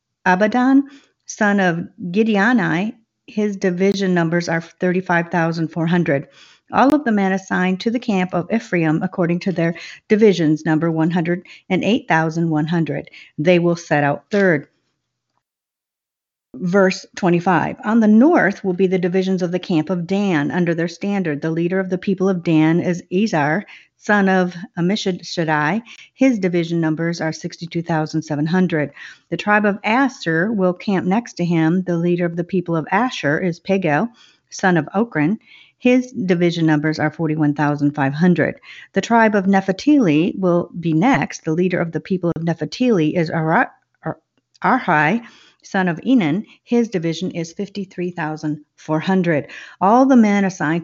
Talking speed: 155 wpm